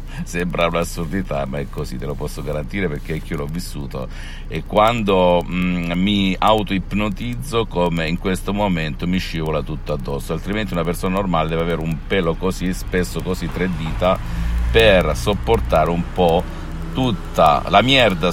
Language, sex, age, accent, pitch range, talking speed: Italian, male, 50-69, native, 85-95 Hz, 150 wpm